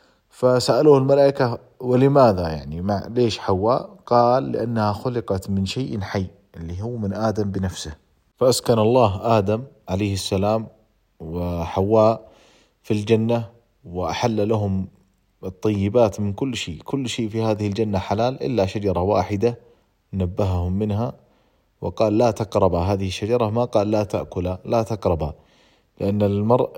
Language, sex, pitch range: Arabic, male, 95-120 Hz